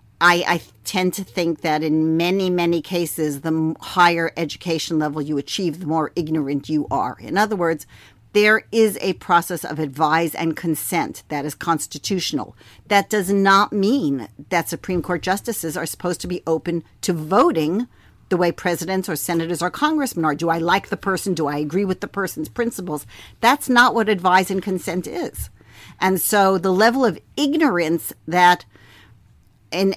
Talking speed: 170 wpm